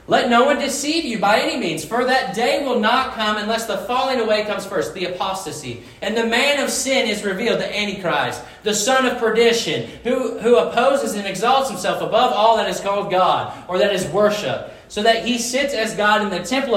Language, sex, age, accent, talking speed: English, male, 30-49, American, 215 wpm